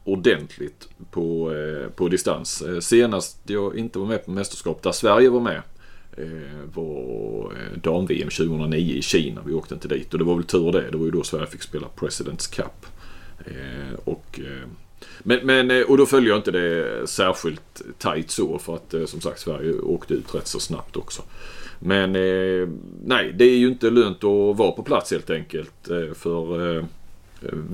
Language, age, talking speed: Swedish, 30-49, 180 wpm